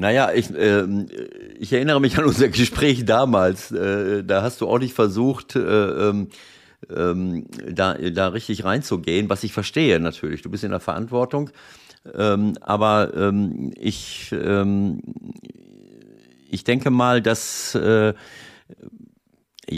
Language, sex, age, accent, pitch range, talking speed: German, male, 50-69, German, 100-120 Hz, 125 wpm